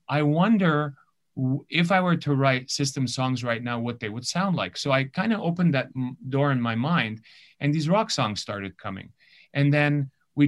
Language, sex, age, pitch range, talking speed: English, male, 30-49, 115-140 Hz, 200 wpm